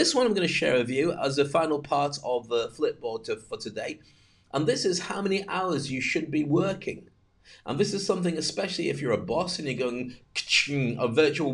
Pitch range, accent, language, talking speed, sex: 135-180 Hz, British, English, 220 wpm, male